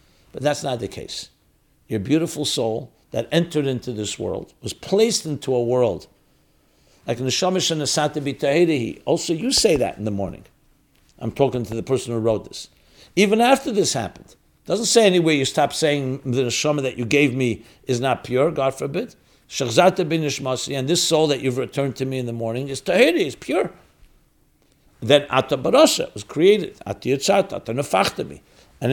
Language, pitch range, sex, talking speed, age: English, 120-155 Hz, male, 170 wpm, 60-79